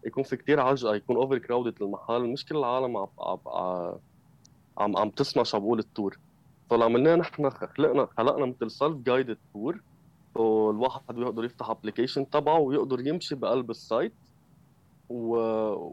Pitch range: 105-130 Hz